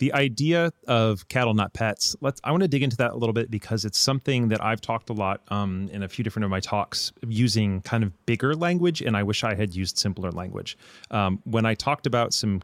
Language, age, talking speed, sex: English, 30-49, 240 wpm, male